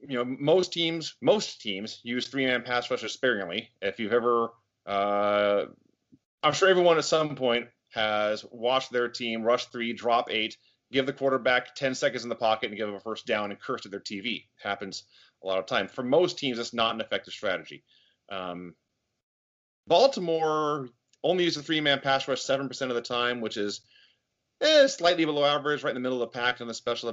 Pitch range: 110-135 Hz